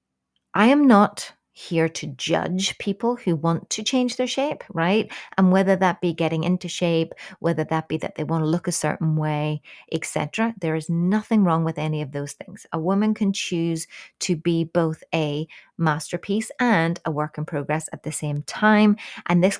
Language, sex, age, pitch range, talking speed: English, female, 30-49, 155-195 Hz, 190 wpm